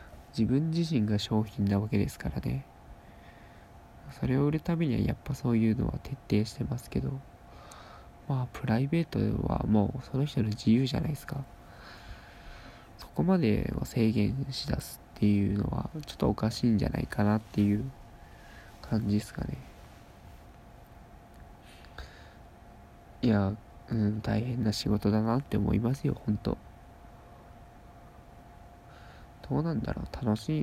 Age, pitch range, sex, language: 20-39, 100-125 Hz, male, Japanese